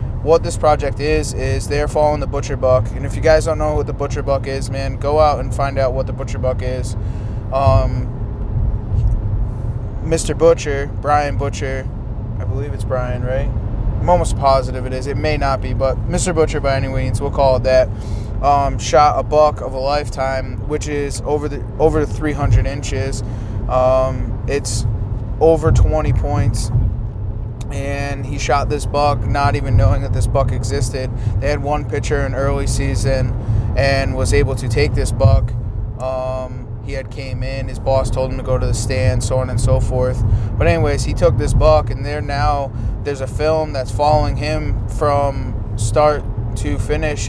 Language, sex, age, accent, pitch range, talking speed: English, male, 20-39, American, 110-135 Hz, 185 wpm